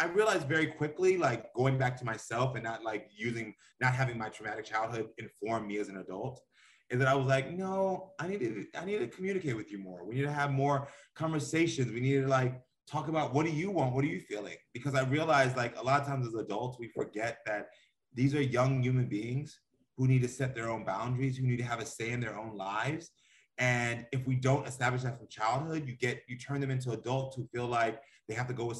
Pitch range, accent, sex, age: 115-140 Hz, American, male, 30-49